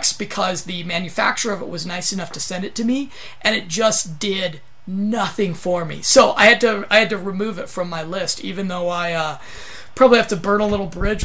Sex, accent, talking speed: male, American, 230 wpm